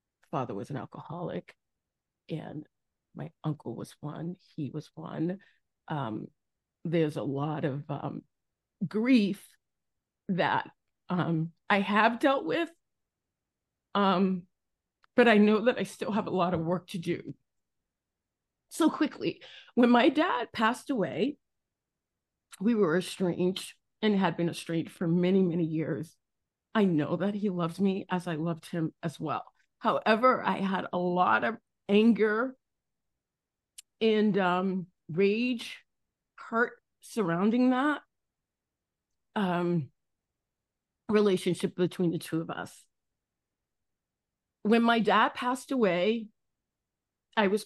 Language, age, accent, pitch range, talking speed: English, 30-49, American, 170-215 Hz, 120 wpm